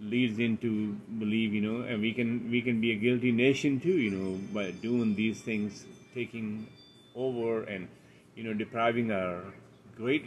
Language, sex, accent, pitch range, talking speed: English, male, Indian, 105-130 Hz, 170 wpm